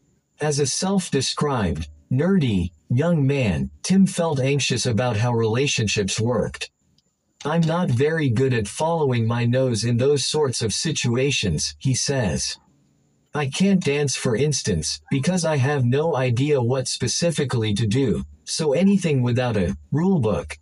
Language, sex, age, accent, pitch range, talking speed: English, male, 50-69, American, 110-150 Hz, 135 wpm